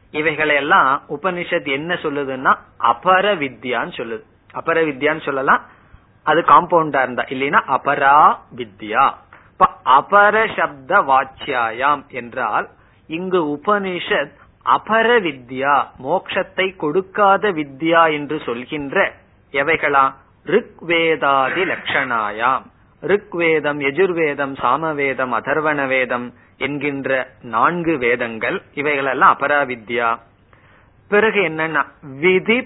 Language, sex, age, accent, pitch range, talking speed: Tamil, male, 30-49, native, 130-175 Hz, 70 wpm